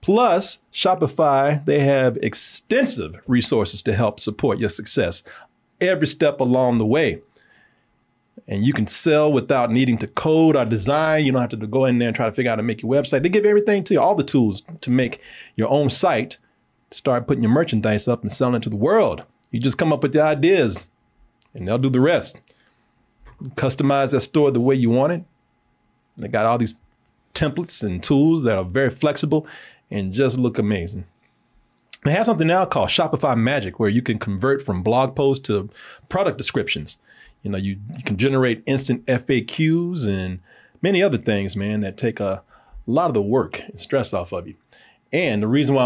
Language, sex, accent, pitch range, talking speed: English, male, American, 110-140 Hz, 195 wpm